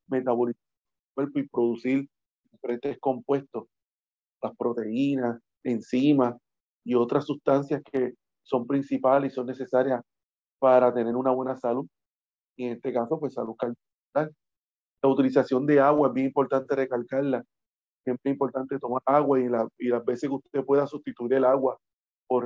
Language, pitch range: Spanish, 125-140 Hz